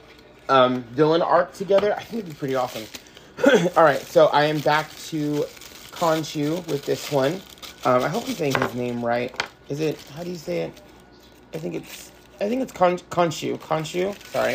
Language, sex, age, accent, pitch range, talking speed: English, male, 30-49, American, 125-155 Hz, 180 wpm